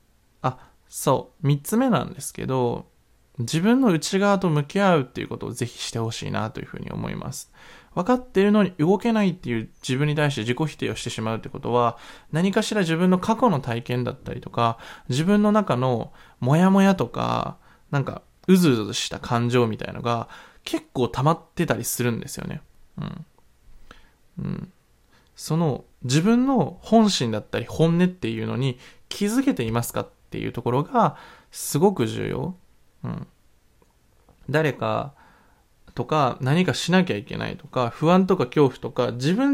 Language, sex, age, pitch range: Japanese, male, 20-39, 120-195 Hz